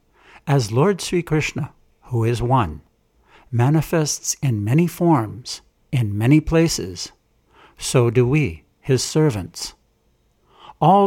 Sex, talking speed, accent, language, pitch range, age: male, 110 wpm, American, English, 115-155 Hz, 60-79